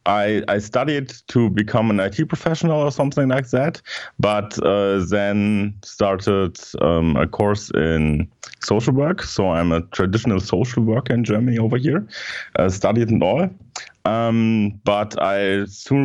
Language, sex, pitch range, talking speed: English, male, 90-115 Hz, 150 wpm